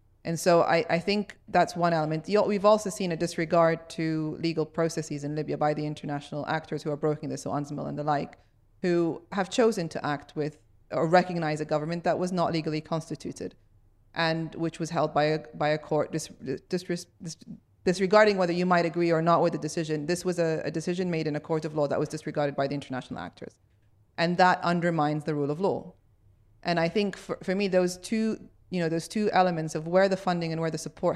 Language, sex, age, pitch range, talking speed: English, female, 30-49, 150-175 Hz, 220 wpm